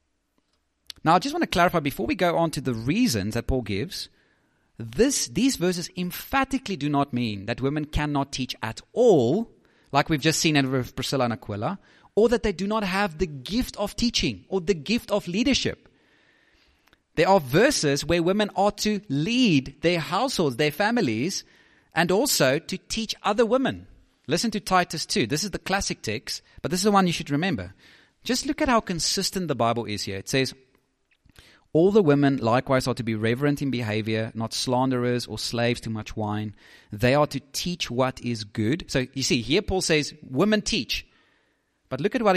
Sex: male